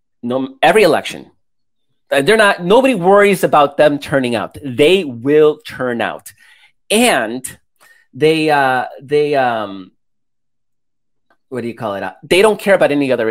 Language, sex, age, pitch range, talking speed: English, male, 30-49, 130-175 Hz, 145 wpm